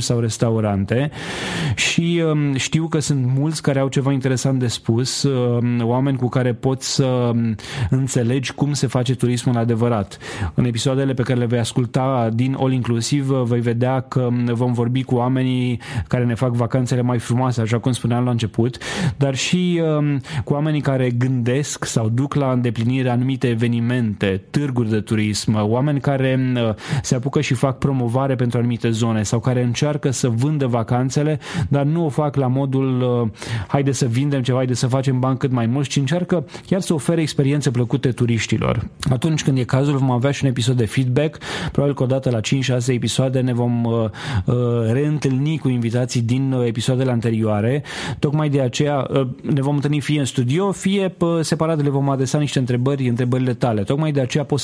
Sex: male